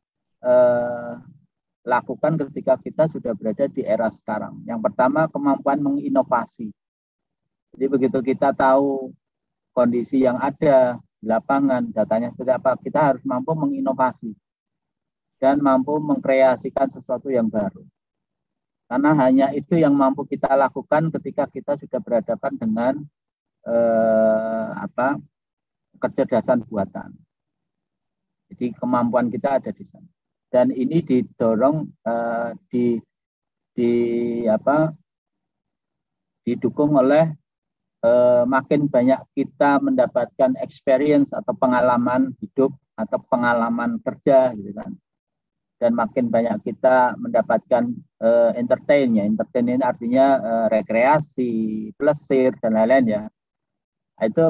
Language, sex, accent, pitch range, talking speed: Indonesian, male, native, 120-150 Hz, 105 wpm